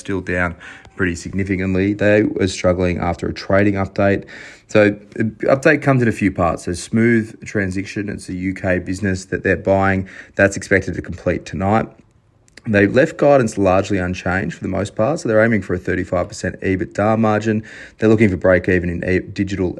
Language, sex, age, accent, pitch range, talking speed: English, male, 30-49, Australian, 90-105 Hz, 175 wpm